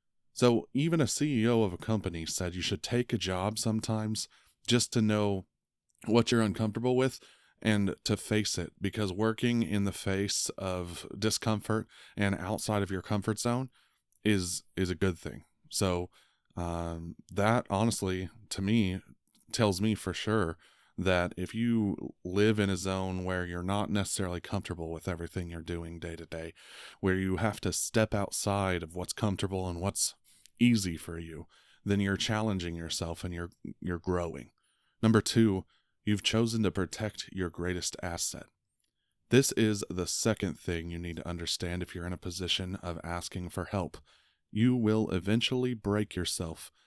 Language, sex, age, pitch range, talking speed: English, male, 30-49, 90-110 Hz, 160 wpm